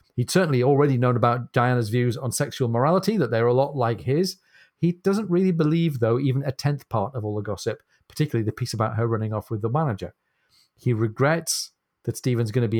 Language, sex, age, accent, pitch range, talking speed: English, male, 40-59, British, 115-150 Hz, 215 wpm